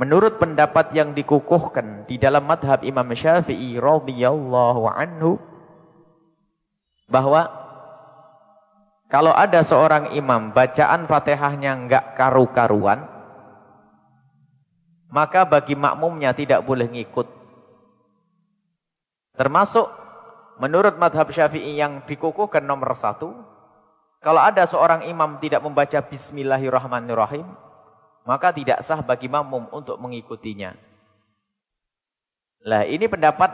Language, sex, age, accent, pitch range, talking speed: English, male, 30-49, Indonesian, 130-165 Hz, 90 wpm